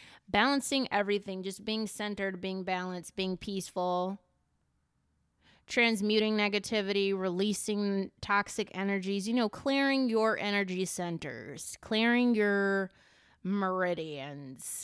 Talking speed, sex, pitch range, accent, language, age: 95 wpm, female, 180-215 Hz, American, English, 20-39